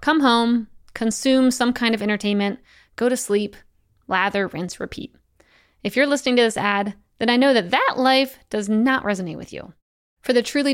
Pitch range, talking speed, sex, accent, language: 210-255 Hz, 185 wpm, female, American, English